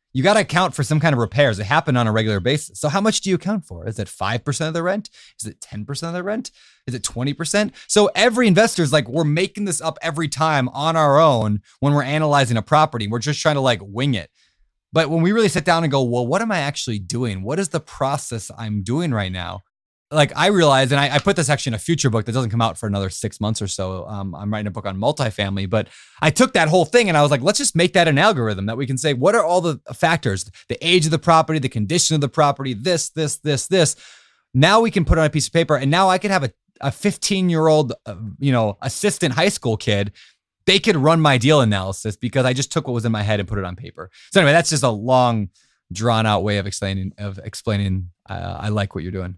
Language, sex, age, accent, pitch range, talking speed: English, male, 20-39, American, 110-165 Hz, 265 wpm